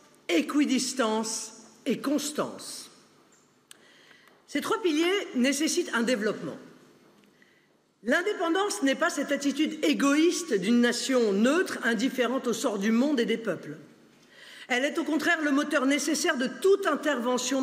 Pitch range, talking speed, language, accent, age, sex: 230-295 Hz, 125 wpm, French, French, 50-69, female